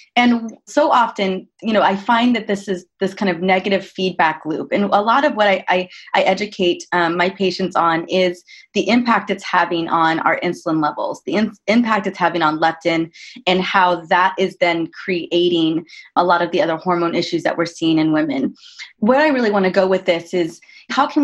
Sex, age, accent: female, 20-39, American